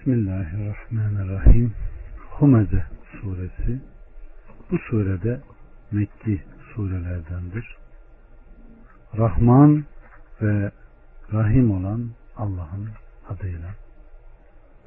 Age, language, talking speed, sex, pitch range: 60-79, Turkish, 50 wpm, male, 95-120 Hz